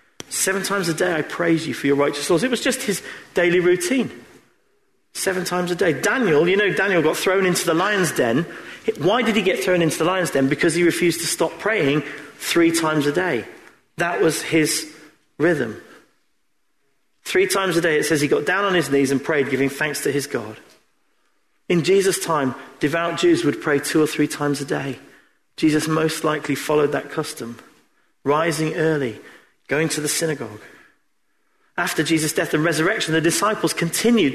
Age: 40-59